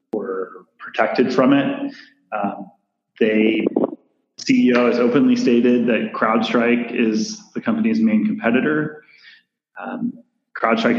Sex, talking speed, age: male, 105 wpm, 30-49